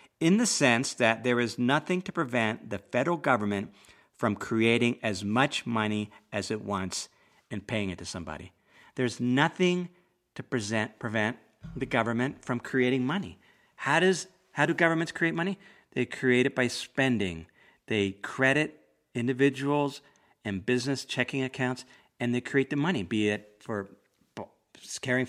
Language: English